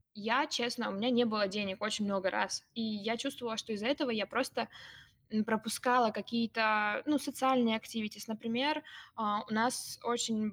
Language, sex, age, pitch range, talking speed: English, female, 20-39, 215-245 Hz, 155 wpm